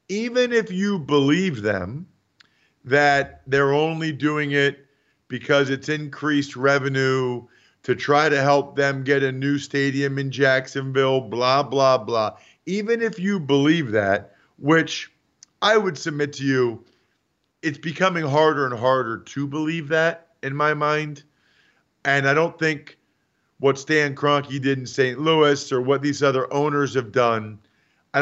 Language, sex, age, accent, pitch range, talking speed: English, male, 50-69, American, 130-160 Hz, 145 wpm